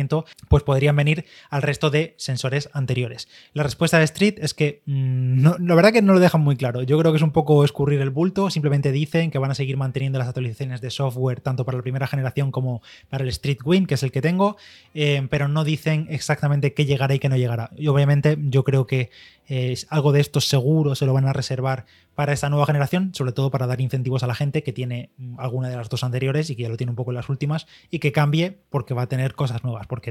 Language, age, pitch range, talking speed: Spanish, 20-39, 130-150 Hz, 245 wpm